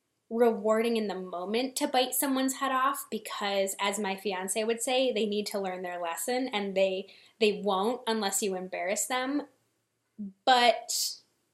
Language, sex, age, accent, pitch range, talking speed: English, female, 10-29, American, 195-255 Hz, 155 wpm